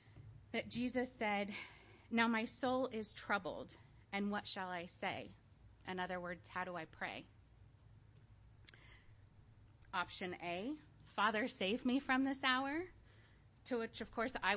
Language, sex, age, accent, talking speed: English, female, 30-49, American, 135 wpm